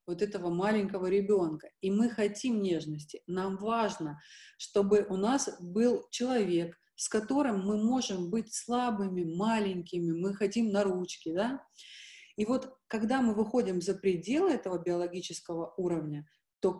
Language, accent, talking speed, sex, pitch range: Russian, native, 135 wpm, female, 175-220 Hz